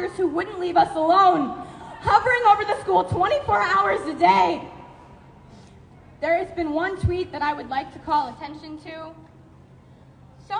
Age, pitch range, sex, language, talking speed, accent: 20-39, 320-410 Hz, female, English, 155 wpm, American